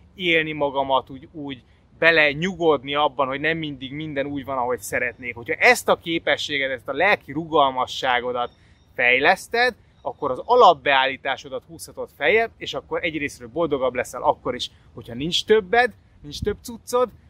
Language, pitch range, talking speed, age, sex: Hungarian, 120-185 Hz, 145 wpm, 20-39, male